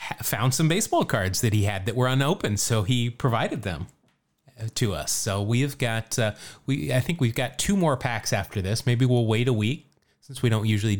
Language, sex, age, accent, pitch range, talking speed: English, male, 30-49, American, 110-150 Hz, 220 wpm